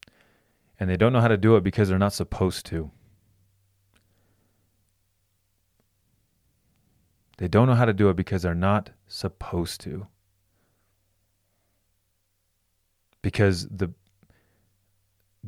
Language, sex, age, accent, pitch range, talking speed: English, male, 30-49, American, 95-105 Hz, 105 wpm